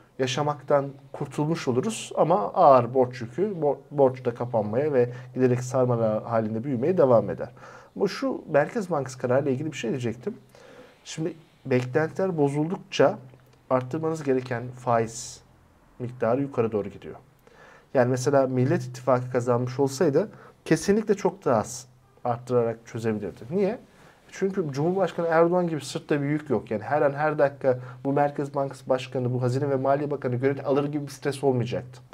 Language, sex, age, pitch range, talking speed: Turkish, male, 50-69, 125-155 Hz, 145 wpm